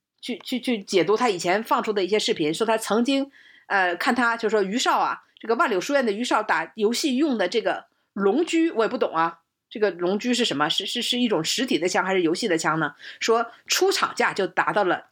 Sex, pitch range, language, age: female, 215-330 Hz, Chinese, 50-69